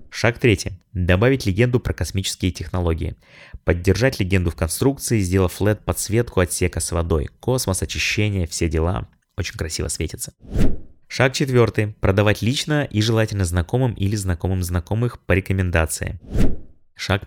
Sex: male